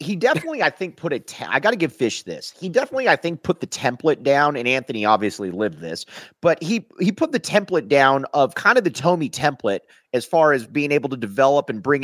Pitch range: 135-170 Hz